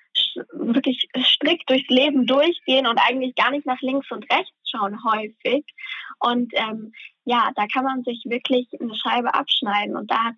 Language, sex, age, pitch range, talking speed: German, female, 10-29, 225-270 Hz, 170 wpm